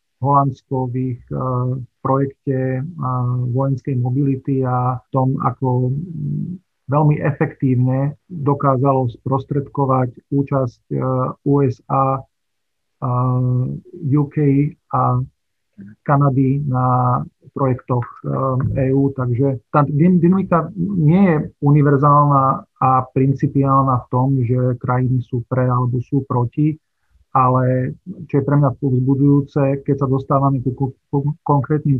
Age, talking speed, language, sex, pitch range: 40-59, 100 wpm, Slovak, male, 130-145 Hz